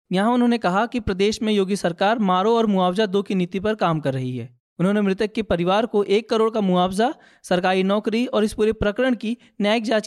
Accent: native